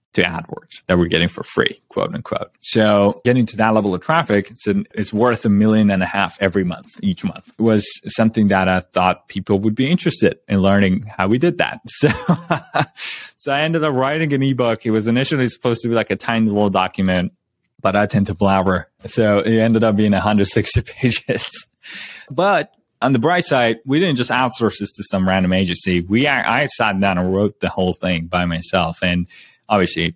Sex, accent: male, American